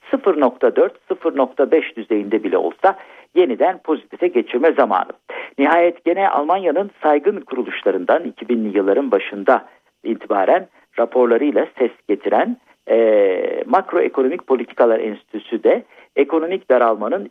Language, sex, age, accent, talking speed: Turkish, male, 50-69, native, 95 wpm